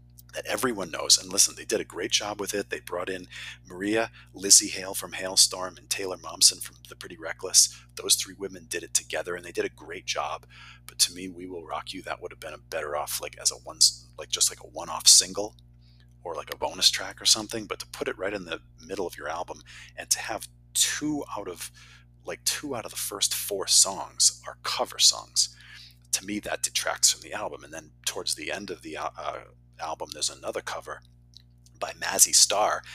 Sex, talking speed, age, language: male, 220 wpm, 40-59, English